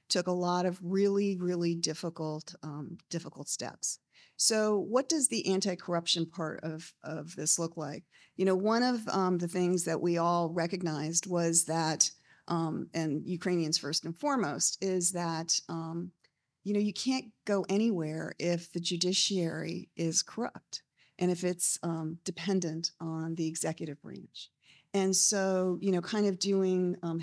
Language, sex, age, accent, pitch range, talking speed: English, female, 40-59, American, 165-200 Hz, 160 wpm